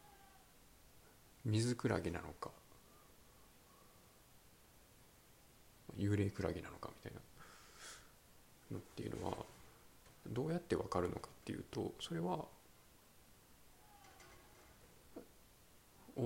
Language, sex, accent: Japanese, male, native